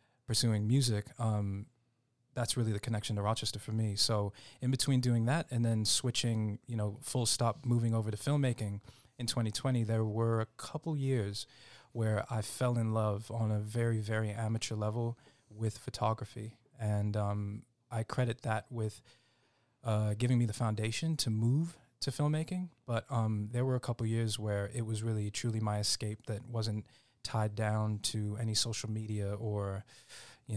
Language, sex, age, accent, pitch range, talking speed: English, male, 20-39, American, 105-120 Hz, 170 wpm